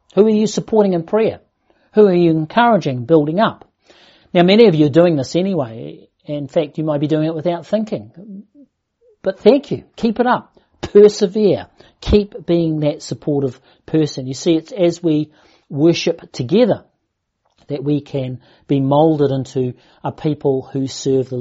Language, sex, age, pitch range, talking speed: English, male, 50-69, 140-175 Hz, 165 wpm